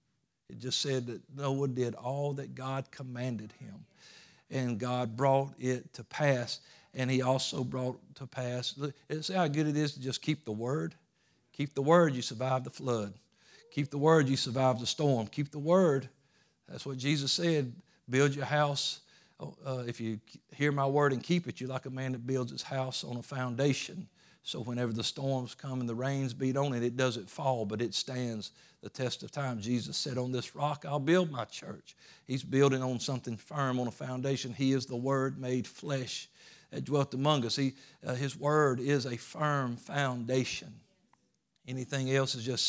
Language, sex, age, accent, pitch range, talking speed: English, male, 50-69, American, 125-145 Hz, 190 wpm